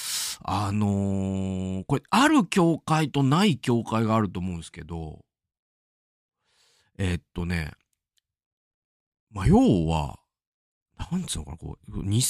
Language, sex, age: Japanese, male, 40-59